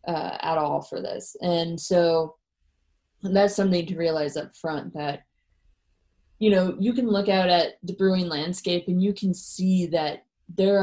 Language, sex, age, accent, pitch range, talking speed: English, female, 20-39, American, 155-190 Hz, 170 wpm